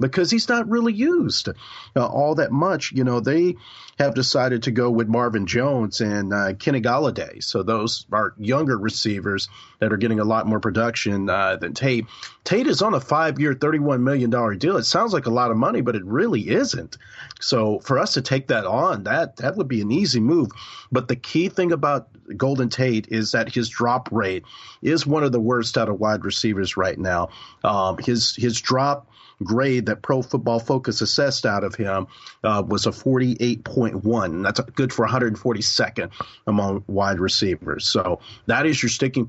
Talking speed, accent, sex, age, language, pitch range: 185 wpm, American, male, 40-59, English, 110-135 Hz